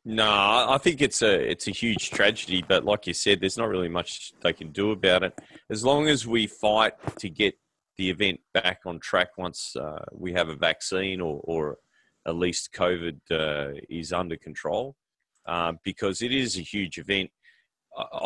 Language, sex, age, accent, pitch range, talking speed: English, male, 30-49, Australian, 85-110 Hz, 185 wpm